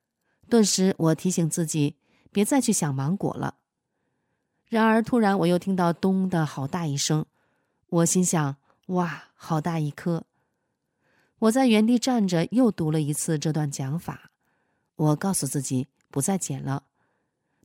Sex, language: female, Chinese